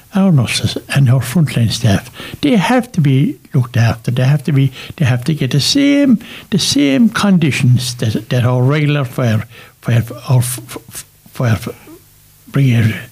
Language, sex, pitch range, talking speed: English, male, 120-145 Hz, 150 wpm